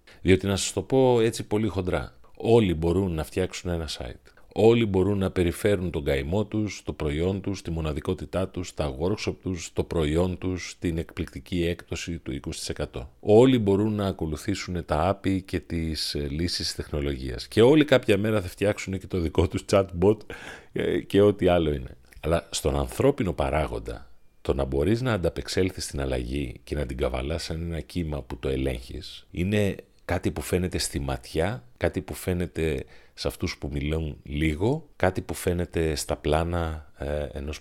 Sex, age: male, 40-59